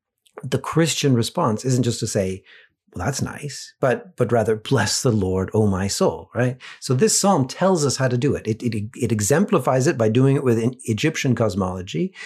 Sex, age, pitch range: male, 40-59, 110-145 Hz